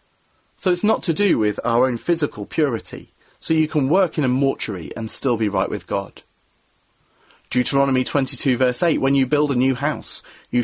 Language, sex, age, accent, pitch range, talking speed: English, male, 30-49, British, 110-140 Hz, 190 wpm